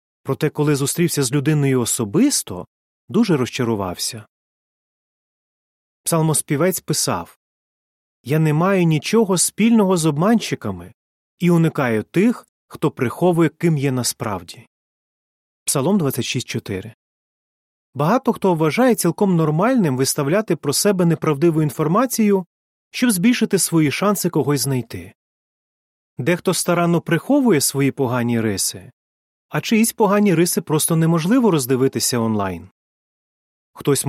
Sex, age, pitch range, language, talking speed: male, 30-49, 125-180 Hz, Ukrainian, 100 wpm